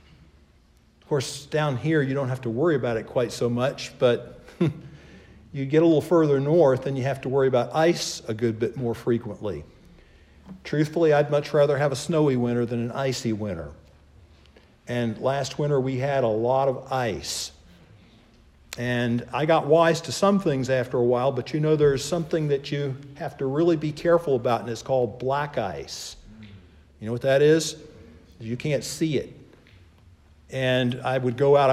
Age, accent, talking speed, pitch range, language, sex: 50-69, American, 180 wpm, 115-155 Hz, English, male